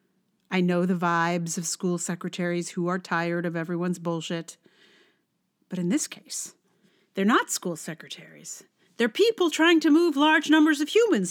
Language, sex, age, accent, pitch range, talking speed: English, female, 40-59, American, 185-275 Hz, 160 wpm